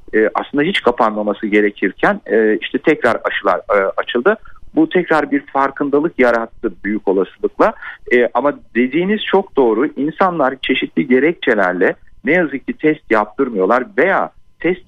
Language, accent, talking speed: Turkish, native, 115 wpm